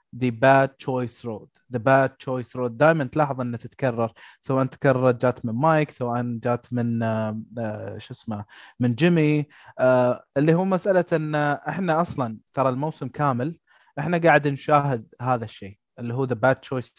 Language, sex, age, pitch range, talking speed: Arabic, male, 20-39, 120-150 Hz, 165 wpm